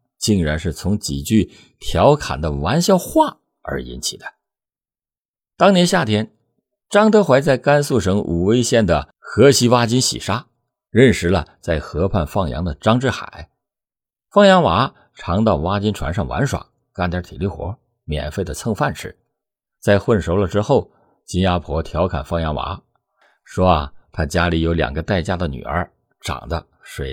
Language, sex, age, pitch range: Chinese, male, 50-69, 85-125 Hz